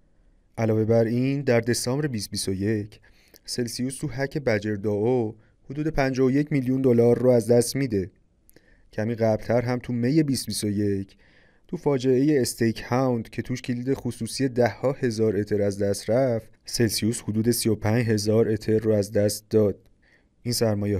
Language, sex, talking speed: Persian, male, 145 wpm